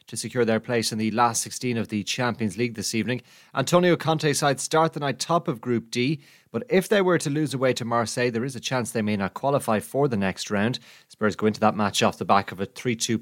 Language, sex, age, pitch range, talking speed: English, male, 30-49, 110-140 Hz, 255 wpm